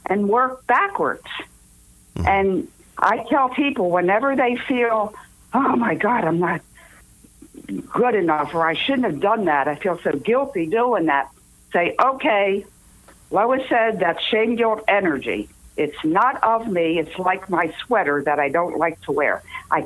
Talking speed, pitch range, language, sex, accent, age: 155 wpm, 165-240 Hz, English, female, American, 60-79